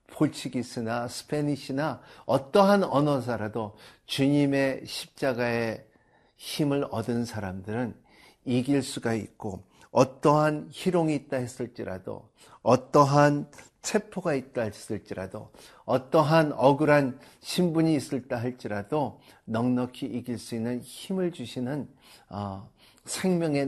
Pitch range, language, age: 100-130 Hz, Korean, 50-69